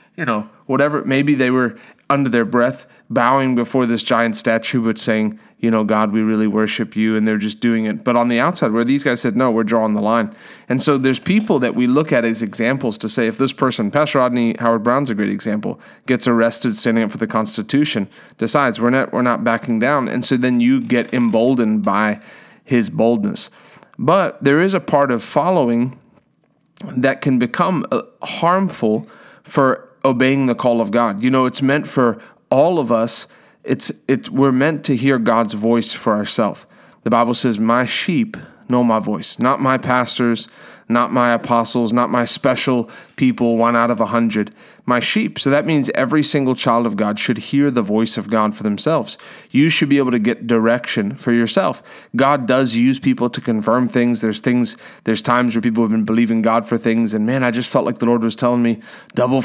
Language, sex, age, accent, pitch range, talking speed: English, male, 30-49, American, 115-135 Hz, 205 wpm